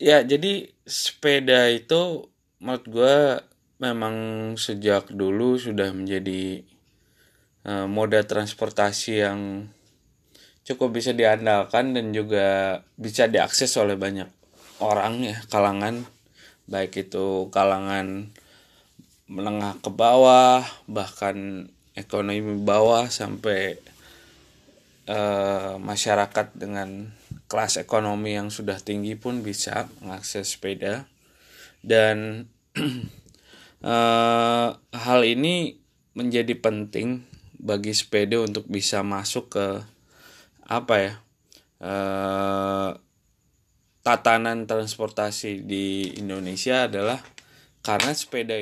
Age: 20-39